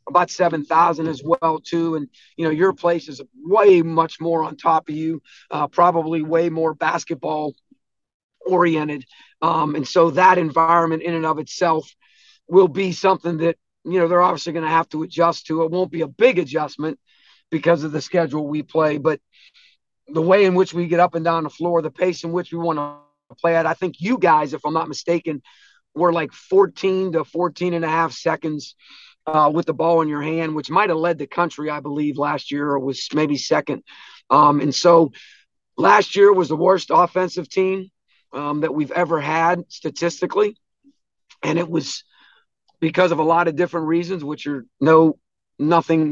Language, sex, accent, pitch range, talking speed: English, male, American, 155-175 Hz, 190 wpm